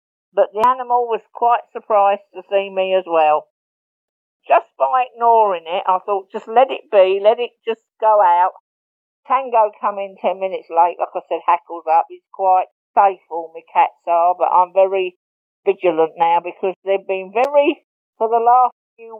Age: 50-69